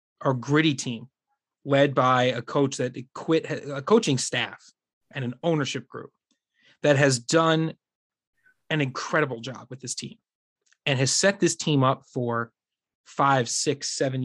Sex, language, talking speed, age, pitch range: male, English, 145 wpm, 20-39, 125-150 Hz